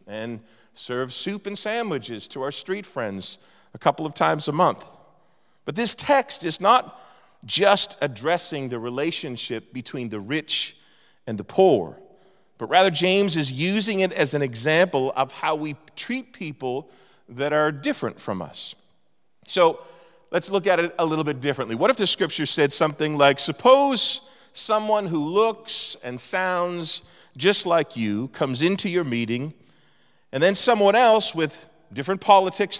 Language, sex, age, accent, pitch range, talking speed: English, male, 40-59, American, 145-195 Hz, 155 wpm